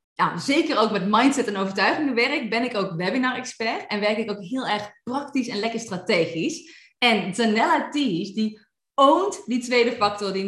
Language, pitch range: Dutch, 220-290 Hz